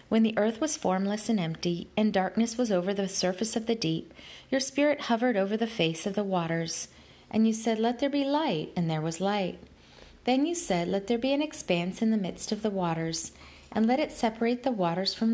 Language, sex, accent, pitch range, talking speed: English, female, American, 180-250 Hz, 225 wpm